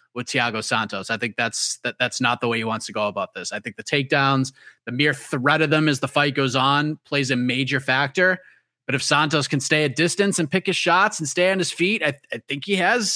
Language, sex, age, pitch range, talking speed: English, male, 30-49, 125-160 Hz, 260 wpm